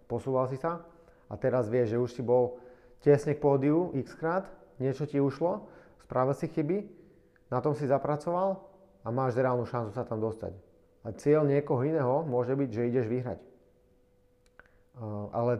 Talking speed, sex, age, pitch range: 160 wpm, male, 30-49, 115-135 Hz